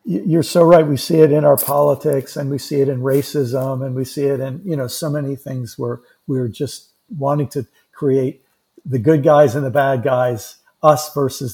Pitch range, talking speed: 130-165 Hz, 210 wpm